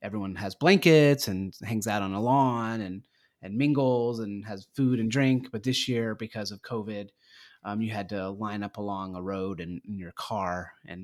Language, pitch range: English, 100-125 Hz